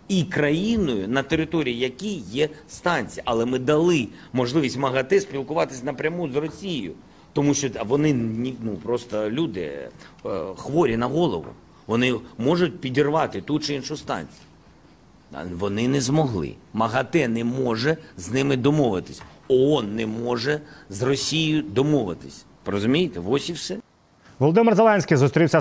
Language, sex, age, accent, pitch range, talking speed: Ukrainian, male, 40-59, native, 125-150 Hz, 130 wpm